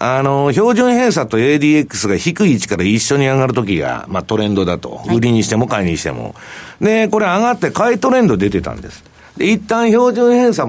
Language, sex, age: Japanese, male, 60-79